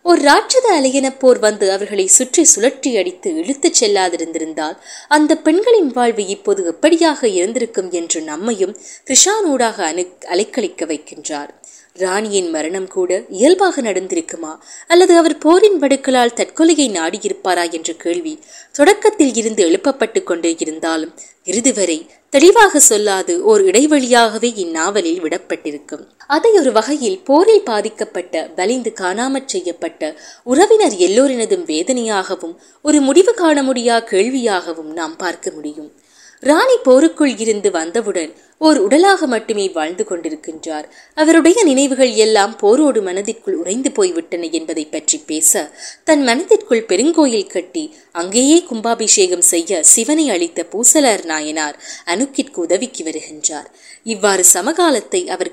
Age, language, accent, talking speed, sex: 20-39, Tamil, native, 90 wpm, female